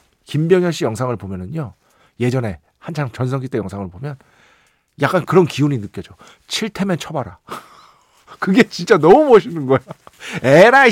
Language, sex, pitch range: Korean, male, 110-180 Hz